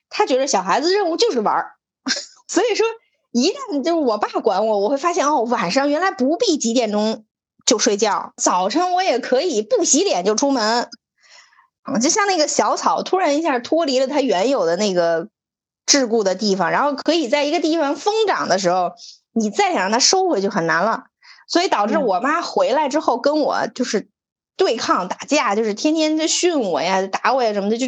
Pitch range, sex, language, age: 210-330 Hz, female, Chinese, 20-39